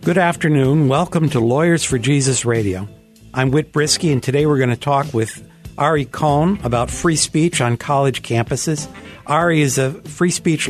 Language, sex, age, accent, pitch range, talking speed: English, male, 60-79, American, 115-145 Hz, 175 wpm